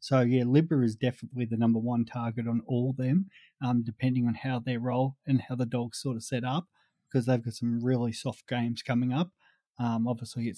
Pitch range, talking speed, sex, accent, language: 120-130 Hz, 215 wpm, male, Australian, English